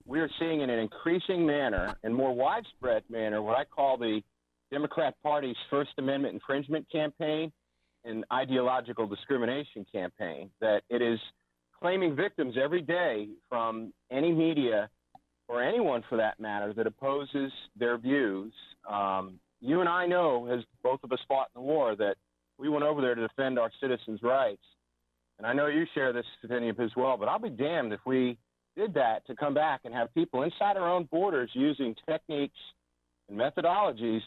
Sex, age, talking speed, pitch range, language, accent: male, 40-59, 175 wpm, 105-140 Hz, English, American